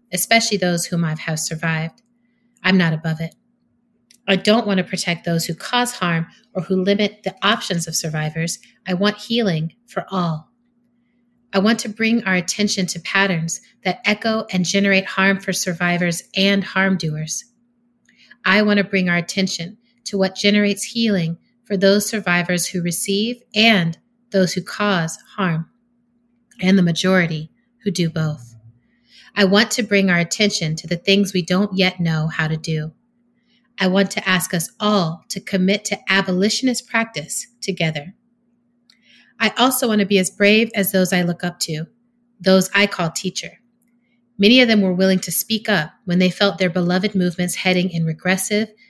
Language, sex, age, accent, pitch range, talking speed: English, female, 30-49, American, 180-230 Hz, 170 wpm